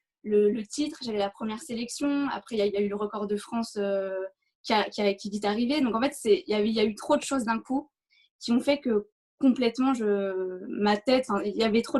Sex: female